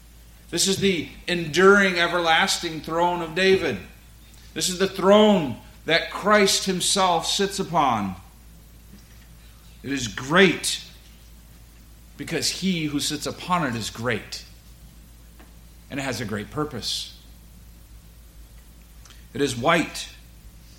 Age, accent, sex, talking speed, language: 40-59, American, male, 105 wpm, English